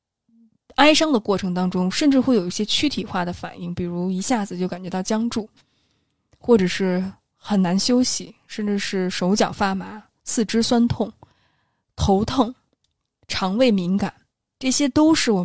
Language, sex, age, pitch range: Chinese, female, 20-39, 180-235 Hz